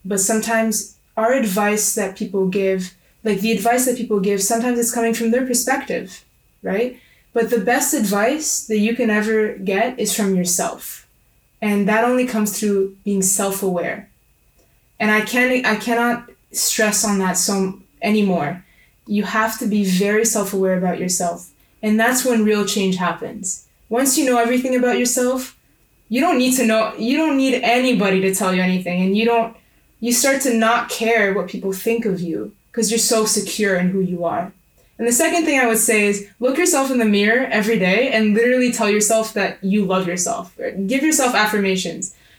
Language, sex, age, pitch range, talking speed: English, female, 20-39, 200-240 Hz, 185 wpm